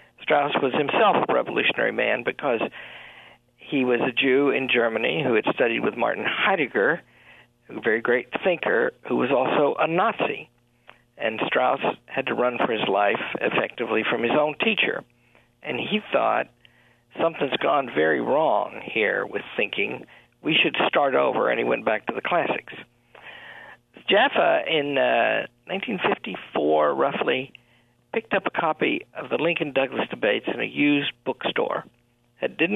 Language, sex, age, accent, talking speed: English, male, 50-69, American, 145 wpm